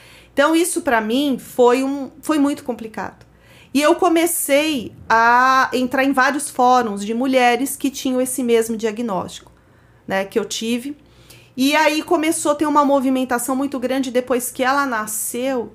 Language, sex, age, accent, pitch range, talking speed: Portuguese, female, 40-59, Brazilian, 225-280 Hz, 155 wpm